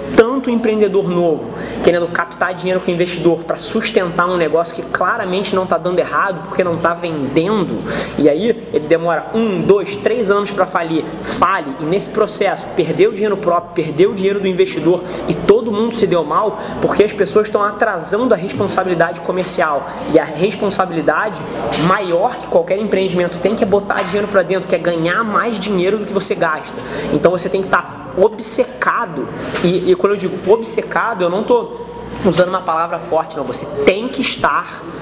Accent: Brazilian